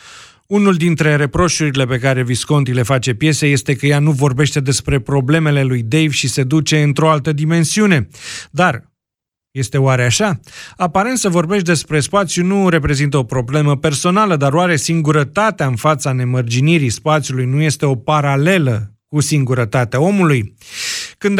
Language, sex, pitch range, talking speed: Romanian, male, 140-170 Hz, 150 wpm